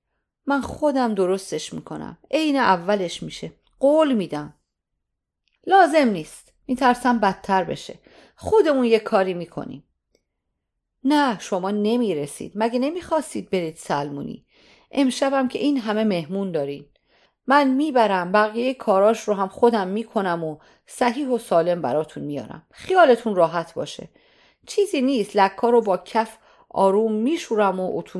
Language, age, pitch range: Persian, 40-59, 180-260 Hz